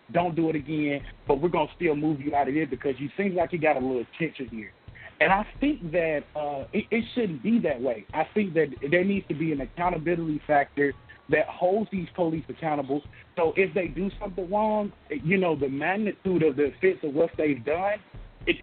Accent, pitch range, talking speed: American, 145-195 Hz, 220 wpm